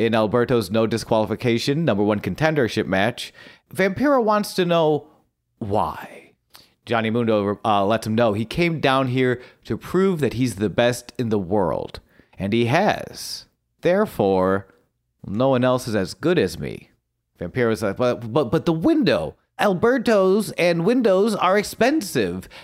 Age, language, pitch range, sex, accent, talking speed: 40-59, English, 115-180 Hz, male, American, 150 wpm